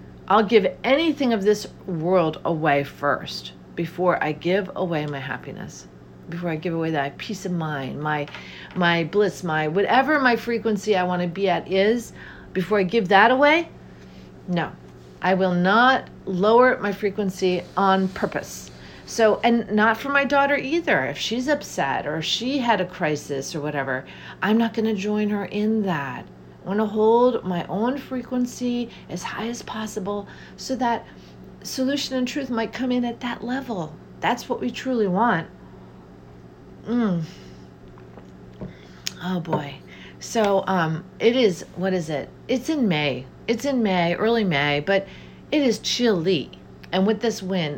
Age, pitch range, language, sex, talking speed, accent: 40-59, 150-225 Hz, English, female, 160 wpm, American